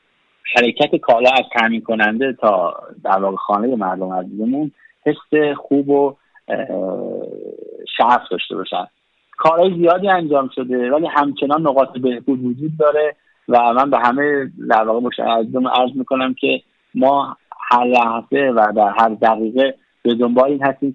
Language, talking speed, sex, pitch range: Persian, 135 wpm, male, 120-155 Hz